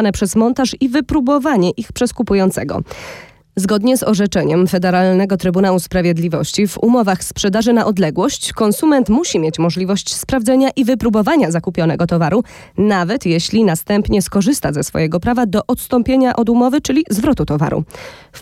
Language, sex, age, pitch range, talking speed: Polish, female, 20-39, 185-245 Hz, 135 wpm